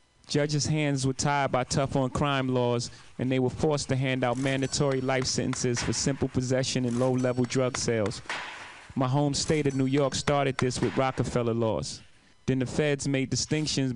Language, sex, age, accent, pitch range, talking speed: English, male, 30-49, American, 125-140 Hz, 170 wpm